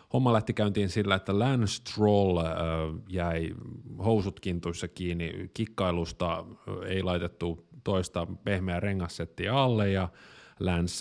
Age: 30-49